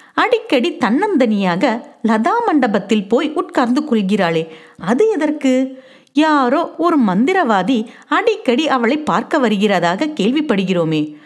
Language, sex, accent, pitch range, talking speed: Tamil, female, native, 210-295 Hz, 90 wpm